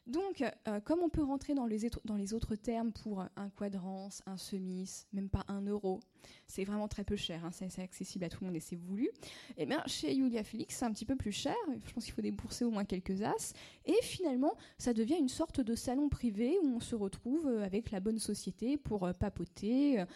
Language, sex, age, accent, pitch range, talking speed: French, female, 20-39, French, 195-280 Hz, 230 wpm